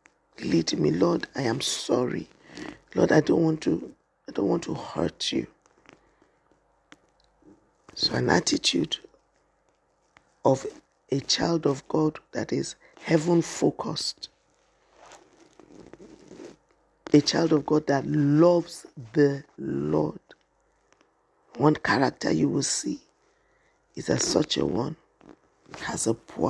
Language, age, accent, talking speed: English, 50-69, Nigerian, 110 wpm